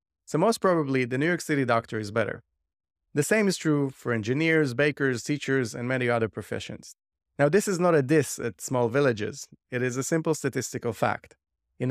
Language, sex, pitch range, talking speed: English, male, 115-155 Hz, 190 wpm